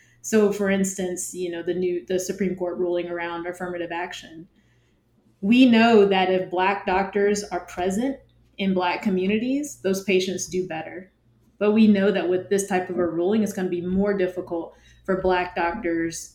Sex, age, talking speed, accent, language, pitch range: female, 20-39, 175 wpm, American, English, 175-200 Hz